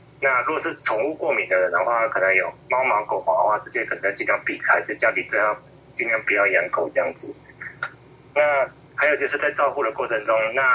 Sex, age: male, 20-39